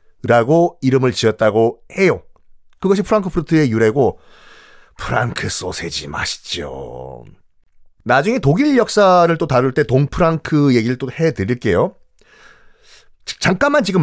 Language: Korean